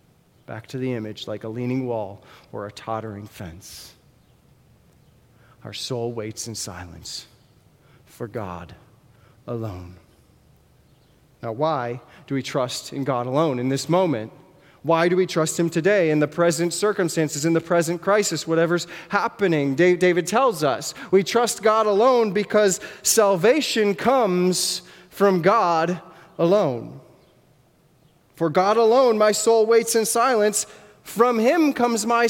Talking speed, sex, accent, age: 135 wpm, male, American, 30-49